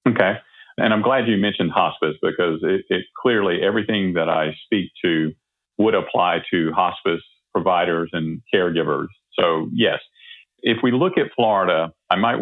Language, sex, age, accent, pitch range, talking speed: English, male, 50-69, American, 85-110 Hz, 155 wpm